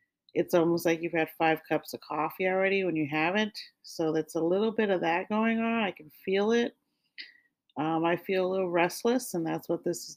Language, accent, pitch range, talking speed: English, American, 165-195 Hz, 220 wpm